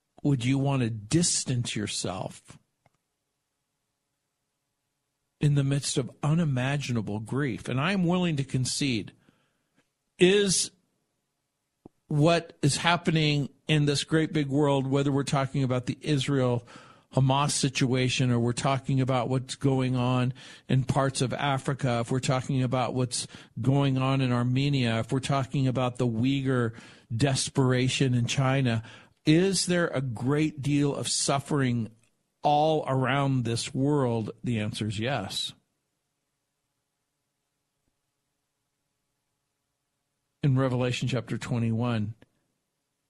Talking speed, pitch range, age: 115 wpm, 125-140 Hz, 50-69